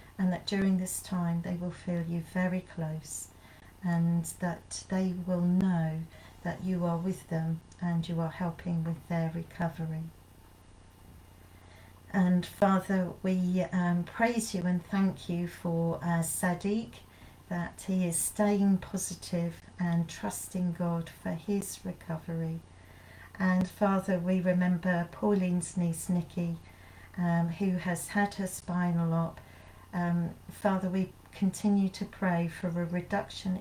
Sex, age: female, 40-59